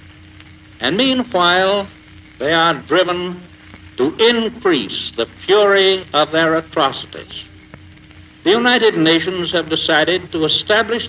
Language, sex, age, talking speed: English, male, 60-79, 105 wpm